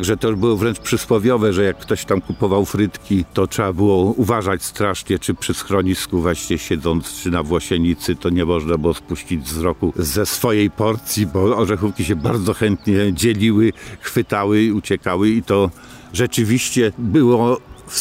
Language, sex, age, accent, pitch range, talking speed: English, male, 50-69, Polish, 85-110 Hz, 155 wpm